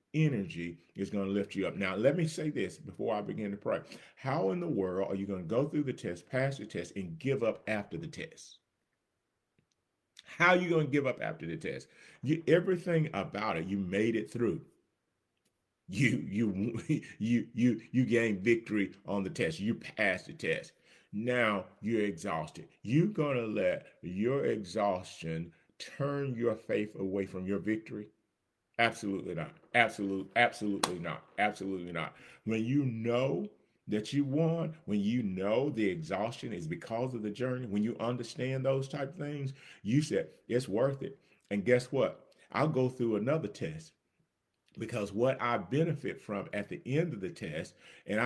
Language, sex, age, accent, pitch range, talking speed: English, male, 40-59, American, 105-135 Hz, 175 wpm